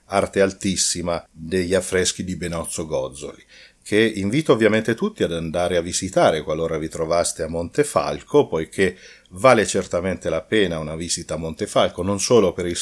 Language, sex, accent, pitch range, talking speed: Italian, male, native, 85-105 Hz, 155 wpm